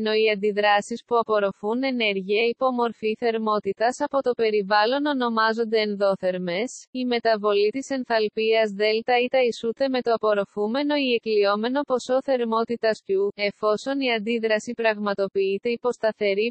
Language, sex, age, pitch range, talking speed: Greek, female, 20-39, 210-250 Hz, 125 wpm